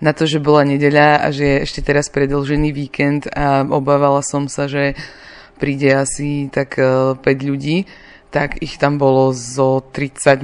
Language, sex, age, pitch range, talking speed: Czech, female, 20-39, 140-155 Hz, 160 wpm